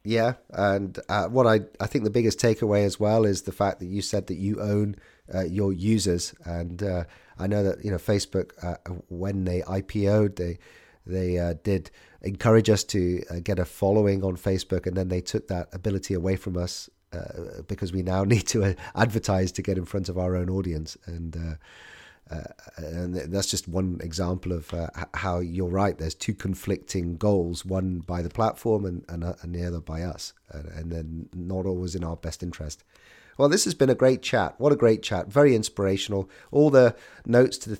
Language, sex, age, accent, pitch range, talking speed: English, male, 30-49, British, 90-105 Hz, 205 wpm